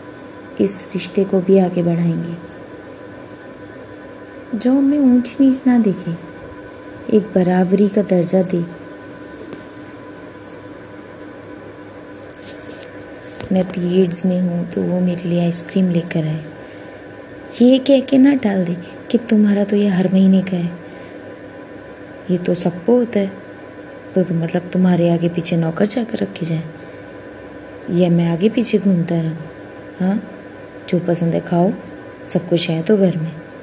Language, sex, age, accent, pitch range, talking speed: Hindi, female, 20-39, native, 170-230 Hz, 130 wpm